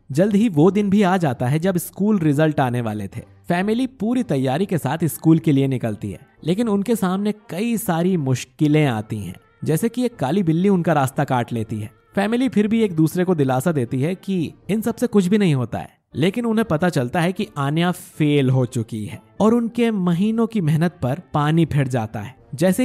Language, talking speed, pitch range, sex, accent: Hindi, 215 wpm, 140-190 Hz, male, native